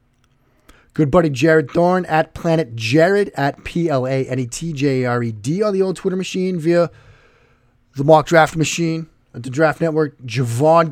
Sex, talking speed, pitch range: male, 130 wpm, 125-160 Hz